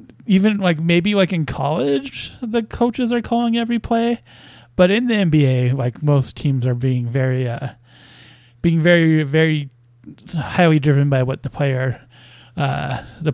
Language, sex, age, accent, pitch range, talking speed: English, male, 20-39, American, 130-170 Hz, 155 wpm